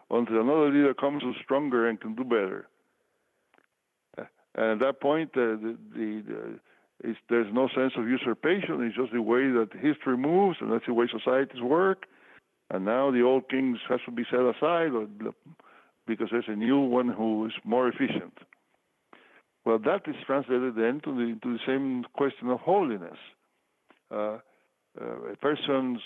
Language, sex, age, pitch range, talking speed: English, male, 60-79, 115-135 Hz, 175 wpm